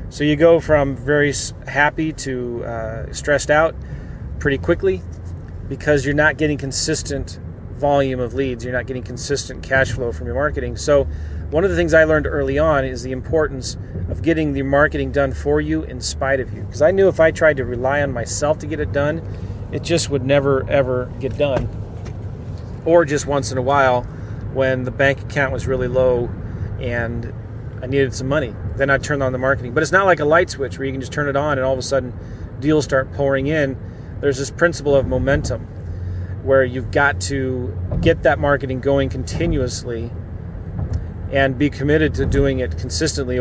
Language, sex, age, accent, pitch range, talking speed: English, male, 30-49, American, 105-145 Hz, 195 wpm